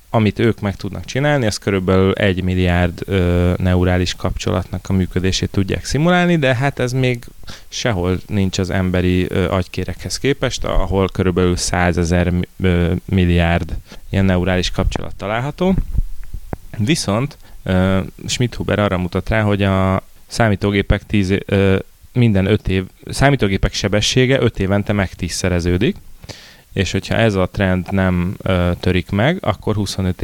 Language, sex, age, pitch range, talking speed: Hungarian, male, 30-49, 90-100 Hz, 130 wpm